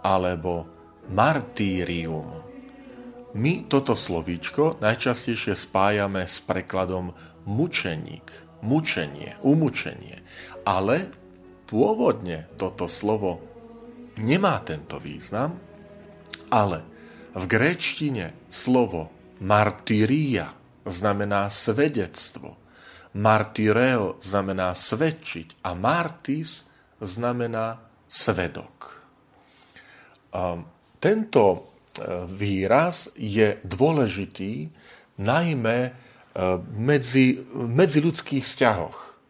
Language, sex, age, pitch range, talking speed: Slovak, male, 40-59, 90-135 Hz, 65 wpm